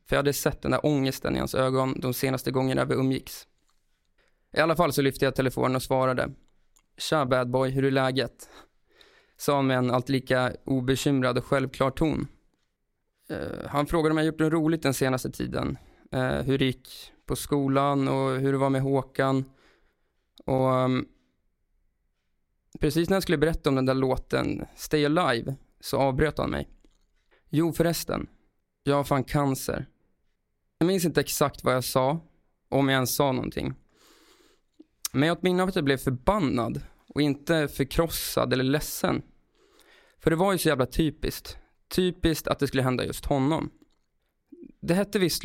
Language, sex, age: Swedish, male, 20-39